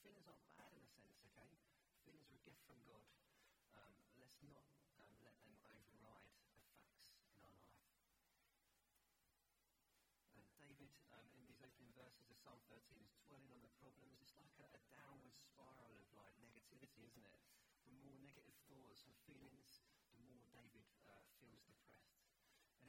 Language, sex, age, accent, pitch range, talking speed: English, male, 40-59, British, 115-140 Hz, 170 wpm